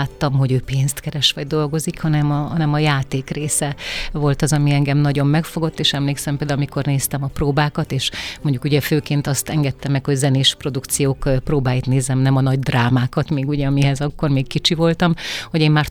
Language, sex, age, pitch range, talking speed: Hungarian, female, 30-49, 140-155 Hz, 195 wpm